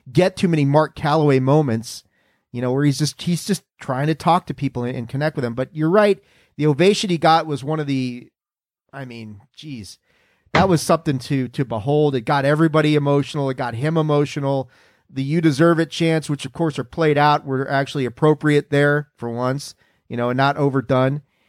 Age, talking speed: 40-59, 200 wpm